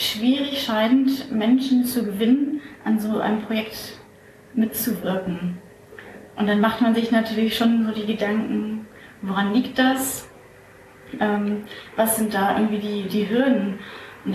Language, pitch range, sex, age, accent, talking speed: German, 205-230 Hz, female, 30-49, German, 135 wpm